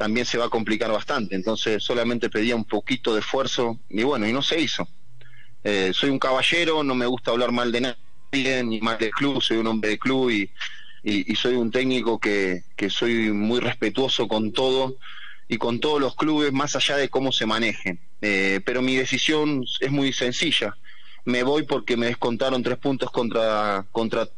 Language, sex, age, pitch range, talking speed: Spanish, male, 30-49, 110-130 Hz, 195 wpm